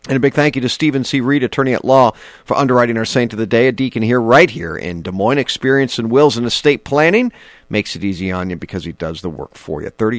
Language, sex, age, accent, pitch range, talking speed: English, male, 50-69, American, 100-145 Hz, 270 wpm